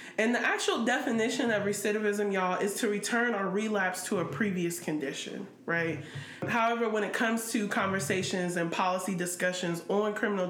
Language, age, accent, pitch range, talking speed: English, 20-39, American, 180-225 Hz, 160 wpm